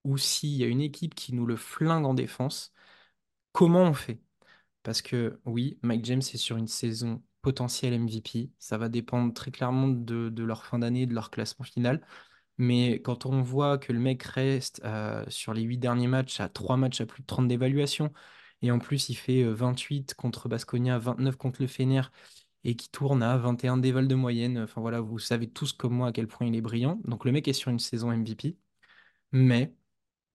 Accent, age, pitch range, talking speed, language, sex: French, 20-39, 120-135 Hz, 205 wpm, French, male